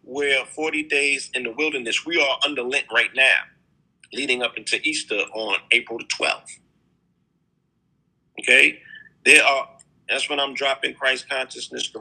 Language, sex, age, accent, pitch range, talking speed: English, male, 50-69, American, 125-155 Hz, 150 wpm